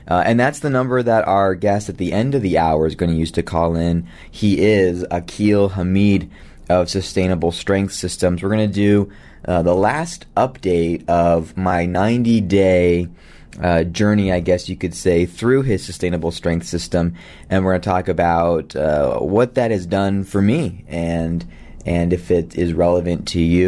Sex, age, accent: male, 20-39, American